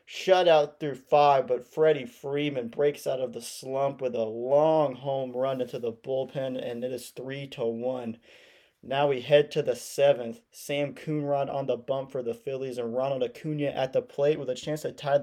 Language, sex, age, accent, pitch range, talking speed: English, male, 30-49, American, 125-145 Hz, 195 wpm